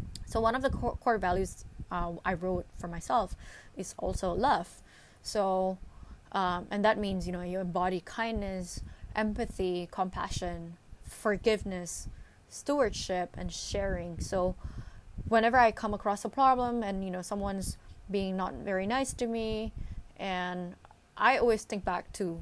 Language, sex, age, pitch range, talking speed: English, female, 20-39, 175-215 Hz, 140 wpm